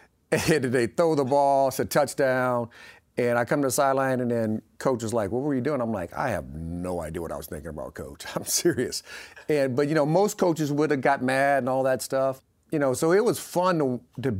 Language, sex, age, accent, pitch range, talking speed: English, male, 50-69, American, 120-145 Hz, 245 wpm